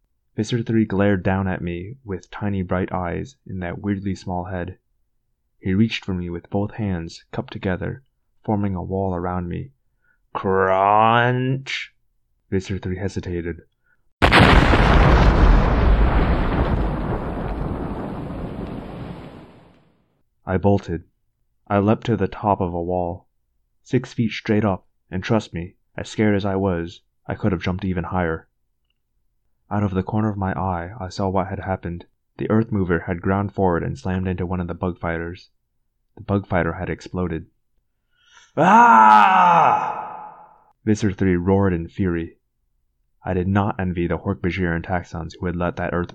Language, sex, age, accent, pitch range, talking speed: English, male, 30-49, American, 85-105 Hz, 140 wpm